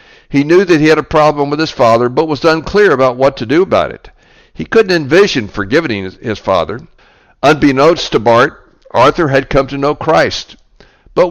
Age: 60-79